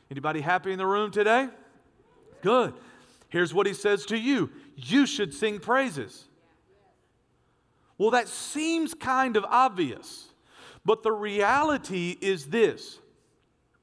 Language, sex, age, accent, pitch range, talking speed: English, male, 40-59, American, 170-235 Hz, 120 wpm